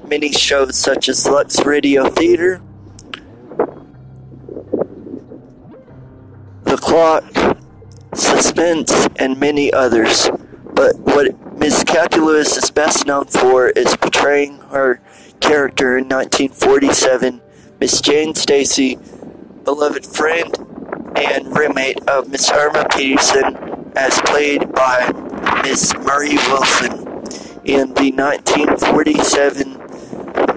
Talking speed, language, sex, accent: 90 wpm, English, male, American